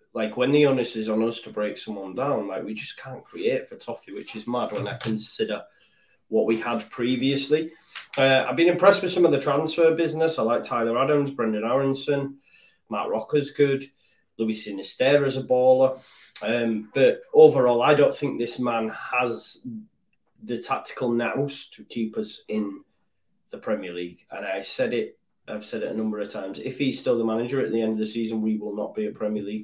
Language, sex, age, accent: English, male, 20-39, British